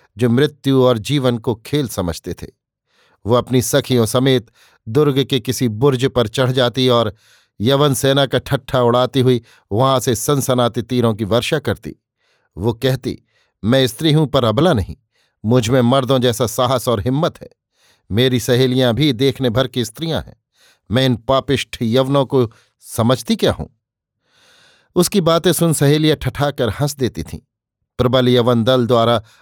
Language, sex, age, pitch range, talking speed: Hindi, male, 50-69, 115-135 Hz, 155 wpm